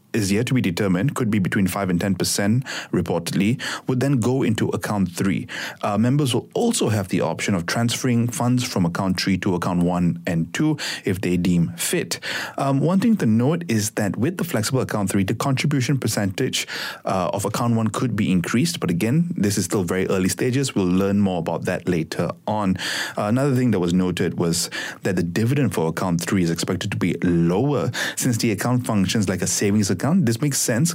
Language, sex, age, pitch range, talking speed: English, male, 30-49, 95-130 Hz, 205 wpm